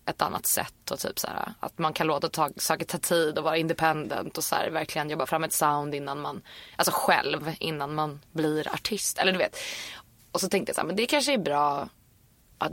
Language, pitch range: Swedish, 155-185 Hz